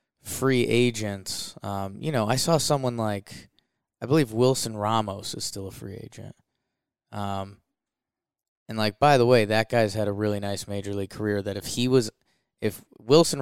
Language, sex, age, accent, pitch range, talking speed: English, male, 20-39, American, 100-120 Hz, 175 wpm